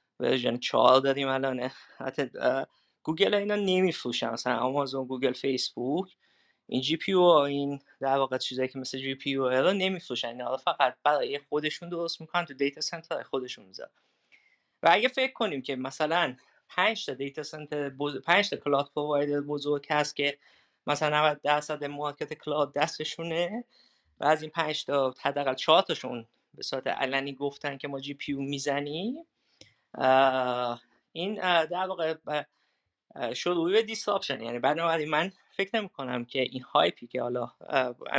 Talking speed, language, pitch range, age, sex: 125 wpm, Persian, 130-165 Hz, 20-39, male